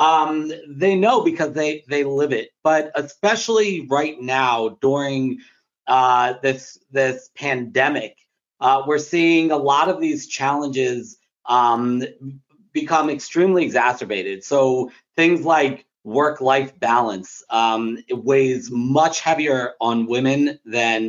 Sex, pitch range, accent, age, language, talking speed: male, 125-150 Hz, American, 40-59, English, 120 wpm